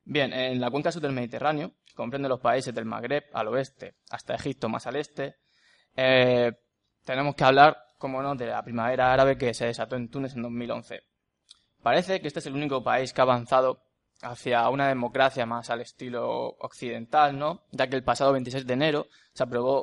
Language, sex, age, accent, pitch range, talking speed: Spanish, male, 20-39, Spanish, 120-140 Hz, 190 wpm